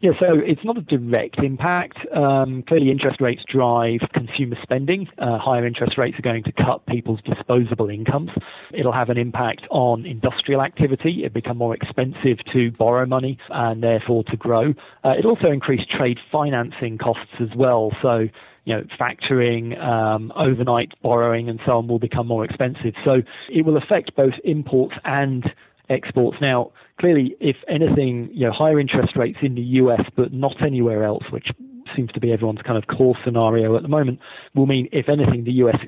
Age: 40-59